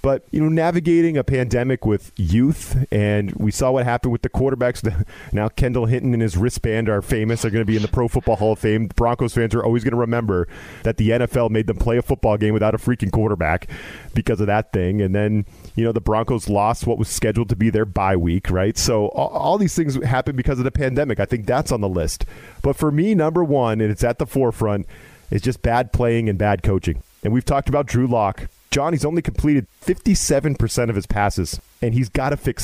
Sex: male